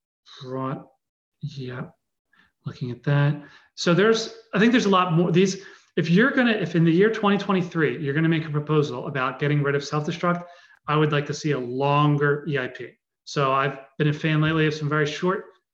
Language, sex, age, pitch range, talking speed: English, male, 30-49, 140-175 Hz, 200 wpm